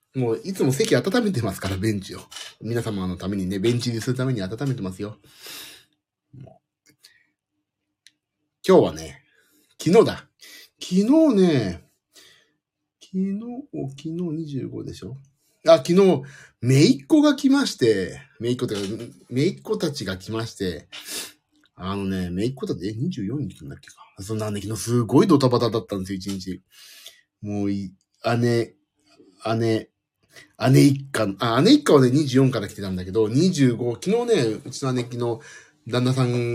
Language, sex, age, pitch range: Japanese, male, 40-59, 100-145 Hz